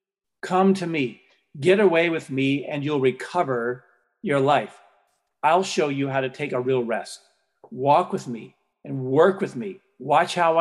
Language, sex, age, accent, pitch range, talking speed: English, male, 50-69, American, 135-180 Hz, 170 wpm